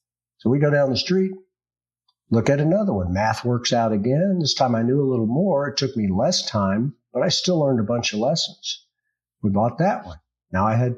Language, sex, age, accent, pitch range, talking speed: English, male, 50-69, American, 100-130 Hz, 225 wpm